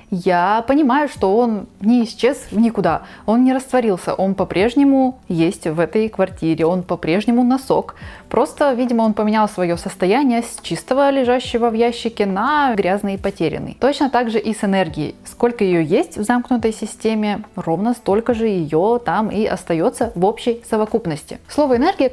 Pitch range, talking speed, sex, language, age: 195-255 Hz, 155 wpm, female, Russian, 20-39